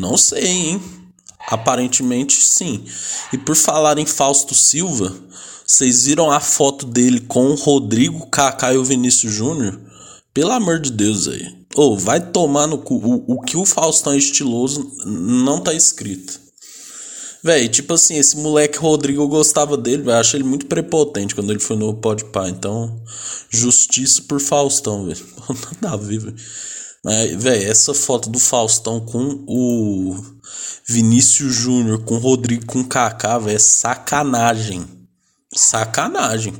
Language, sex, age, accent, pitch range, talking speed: Portuguese, male, 20-39, Brazilian, 110-150 Hz, 150 wpm